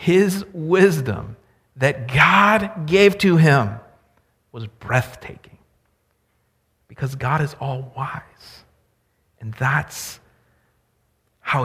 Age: 50-69